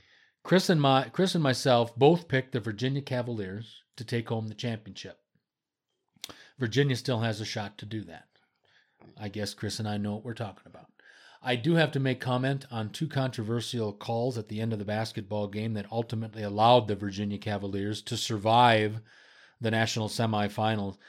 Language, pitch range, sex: English, 110-140 Hz, male